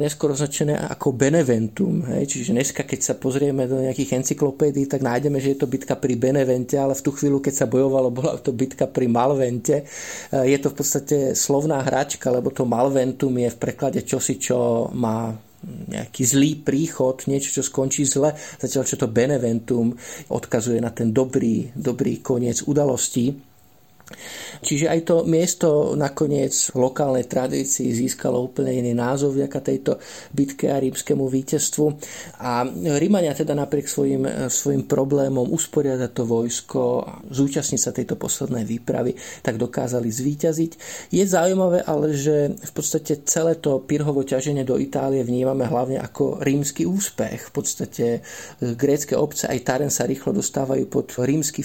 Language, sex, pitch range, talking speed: Slovak, male, 125-150 Hz, 150 wpm